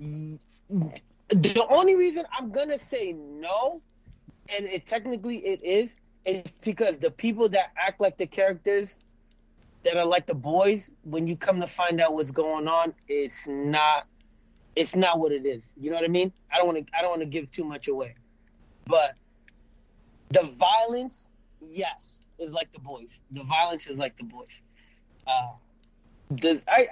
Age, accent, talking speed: 30-49, American, 170 wpm